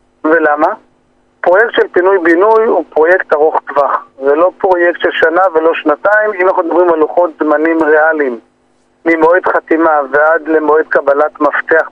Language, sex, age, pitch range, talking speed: Hebrew, male, 40-59, 150-190 Hz, 140 wpm